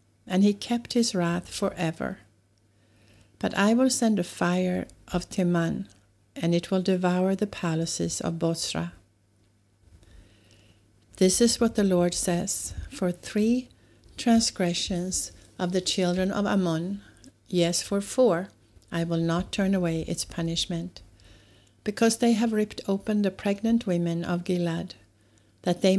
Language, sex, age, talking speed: English, female, 60-79, 135 wpm